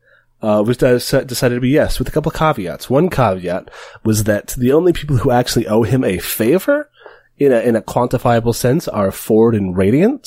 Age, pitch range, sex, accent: 30-49, 95-125 Hz, male, American